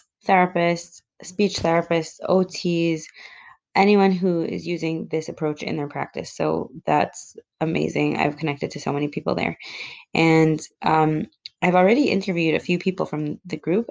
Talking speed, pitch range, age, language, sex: 145 wpm, 150-185 Hz, 20-39, English, female